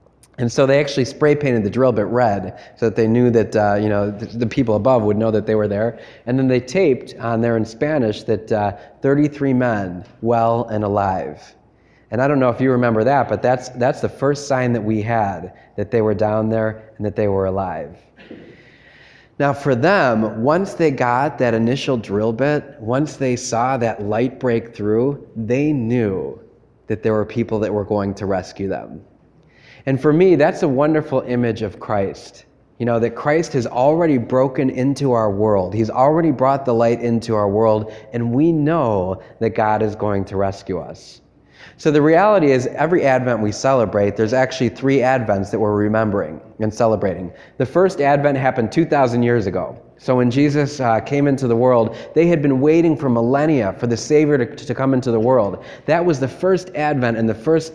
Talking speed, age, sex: 200 wpm, 30-49, male